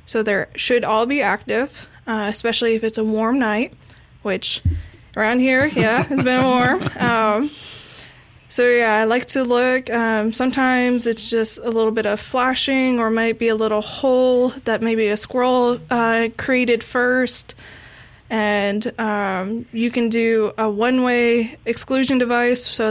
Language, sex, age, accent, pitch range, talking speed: English, female, 20-39, American, 215-245 Hz, 155 wpm